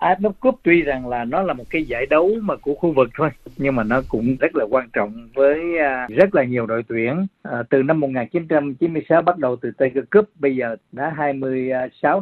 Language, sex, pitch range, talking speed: Vietnamese, male, 125-165 Hz, 210 wpm